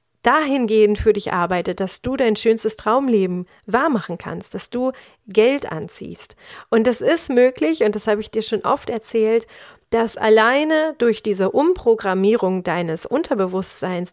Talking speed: 145 wpm